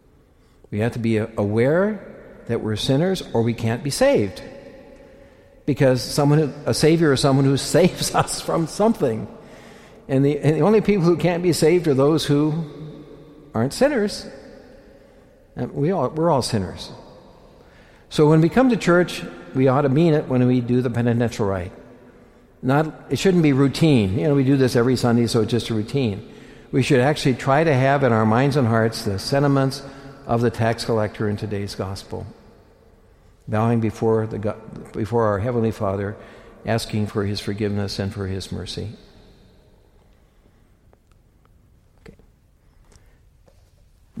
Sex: male